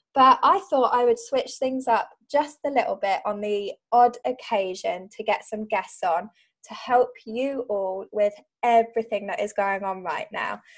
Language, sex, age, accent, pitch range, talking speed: English, female, 20-39, British, 210-255 Hz, 185 wpm